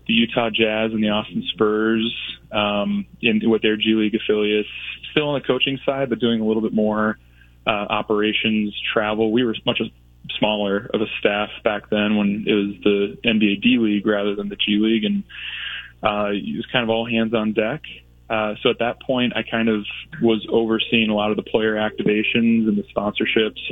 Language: English